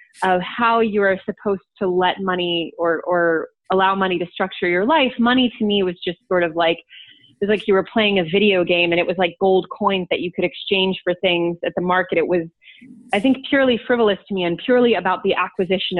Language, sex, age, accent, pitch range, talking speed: English, female, 20-39, American, 175-220 Hz, 230 wpm